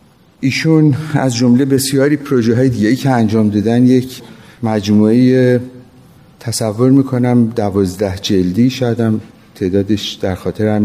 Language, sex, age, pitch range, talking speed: Persian, male, 50-69, 100-115 Hz, 105 wpm